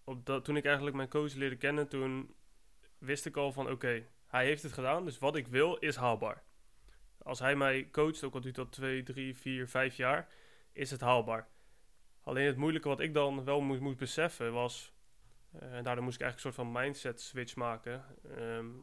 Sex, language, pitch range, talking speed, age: male, Dutch, 125-145 Hz, 205 wpm, 20-39